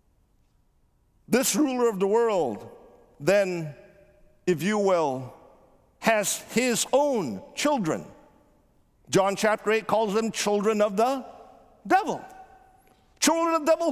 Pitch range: 175-255 Hz